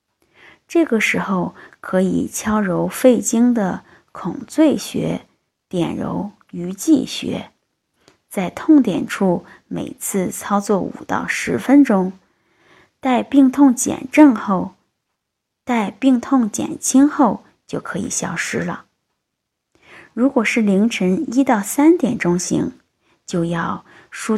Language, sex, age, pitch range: Chinese, female, 20-39, 190-270 Hz